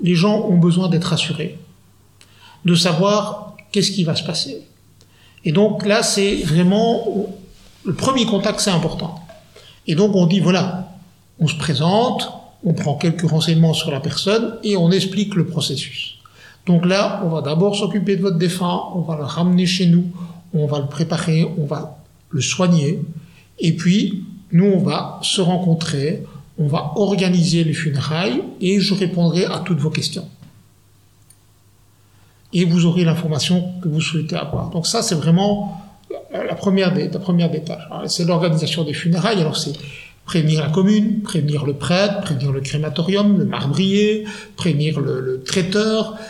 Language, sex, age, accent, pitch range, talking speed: French, male, 50-69, French, 155-195 Hz, 160 wpm